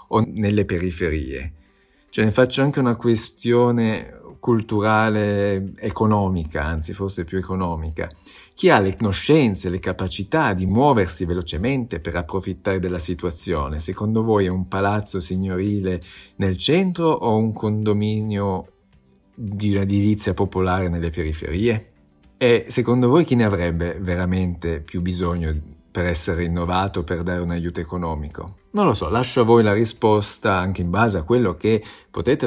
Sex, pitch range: male, 85-105 Hz